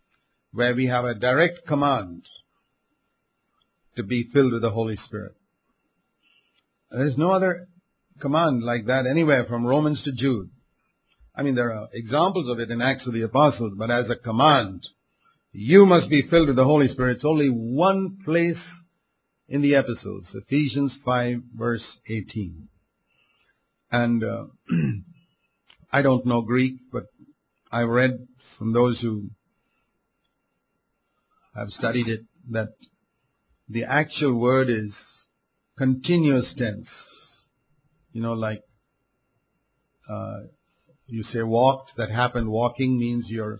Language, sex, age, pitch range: English, male, 50-69, 115-145 Hz